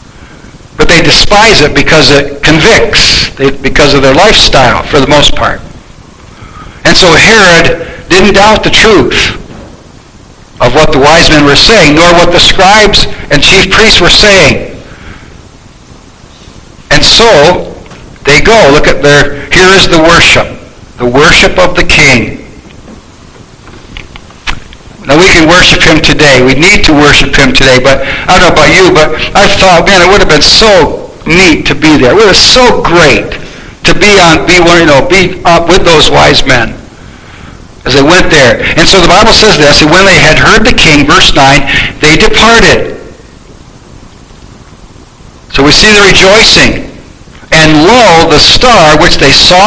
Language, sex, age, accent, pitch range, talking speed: English, male, 60-79, American, 145-185 Hz, 160 wpm